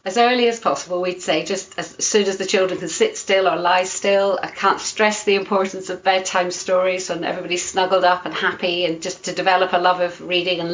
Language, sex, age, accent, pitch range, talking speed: English, female, 40-59, British, 170-195 Hz, 230 wpm